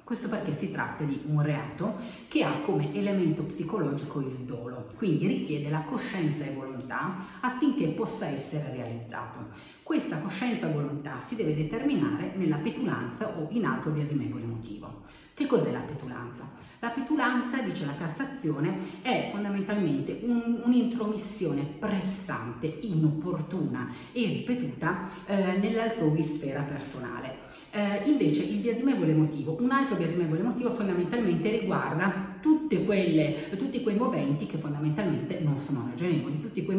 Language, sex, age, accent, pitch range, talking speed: Italian, female, 40-59, native, 150-210 Hz, 130 wpm